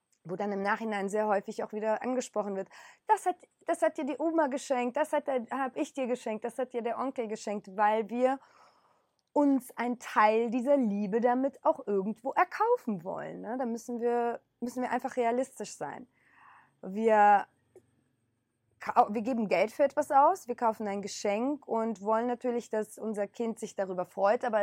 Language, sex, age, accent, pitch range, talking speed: German, female, 20-39, German, 205-255 Hz, 170 wpm